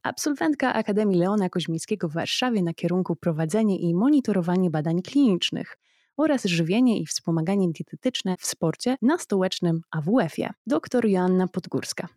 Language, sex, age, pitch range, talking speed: Polish, female, 20-39, 170-230 Hz, 130 wpm